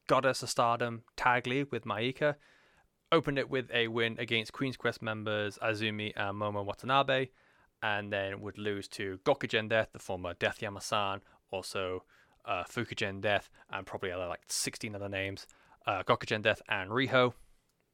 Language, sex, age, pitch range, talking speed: English, male, 20-39, 105-130 Hz, 165 wpm